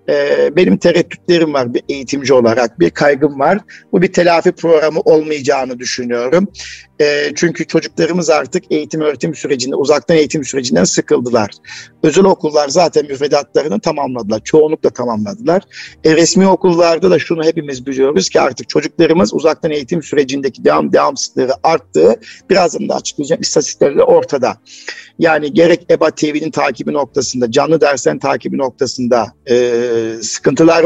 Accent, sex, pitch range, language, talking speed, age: native, male, 135-170 Hz, Turkish, 130 wpm, 50-69